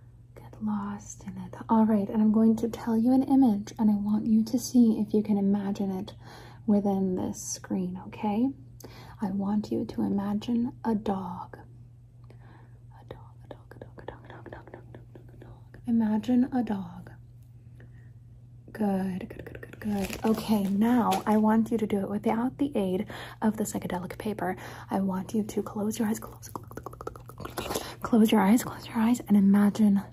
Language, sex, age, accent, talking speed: English, female, 30-49, American, 180 wpm